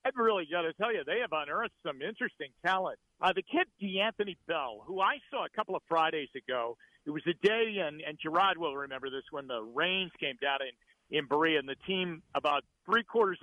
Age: 50-69